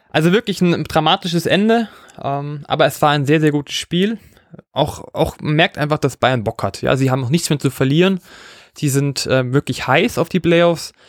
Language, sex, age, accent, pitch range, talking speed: German, male, 20-39, German, 130-170 Hz, 200 wpm